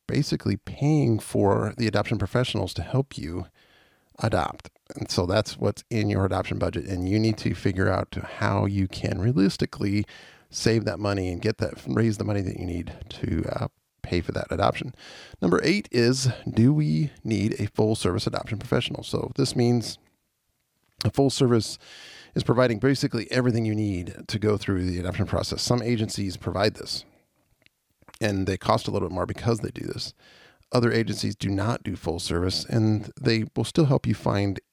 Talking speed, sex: 180 wpm, male